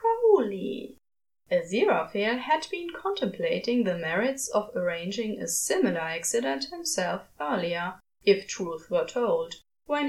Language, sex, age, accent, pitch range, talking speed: English, female, 20-39, German, 195-320 Hz, 105 wpm